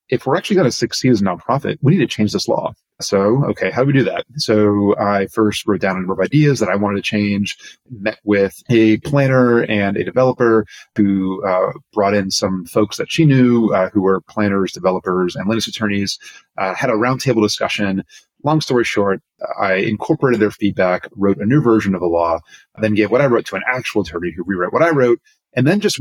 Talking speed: 220 wpm